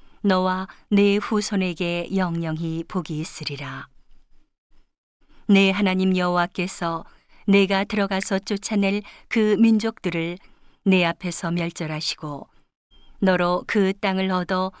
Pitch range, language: 175-205 Hz, Korean